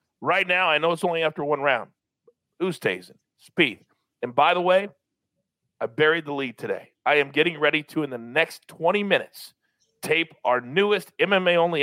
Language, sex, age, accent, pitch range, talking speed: English, male, 40-59, American, 155-250 Hz, 170 wpm